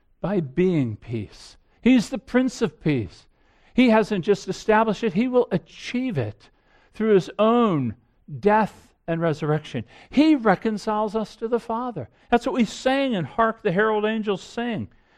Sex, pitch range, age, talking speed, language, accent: male, 180-235 Hz, 50-69, 155 wpm, English, American